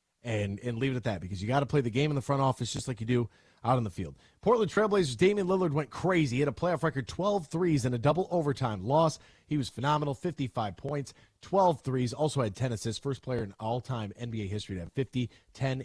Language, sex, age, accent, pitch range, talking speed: English, male, 30-49, American, 110-150 Hz, 240 wpm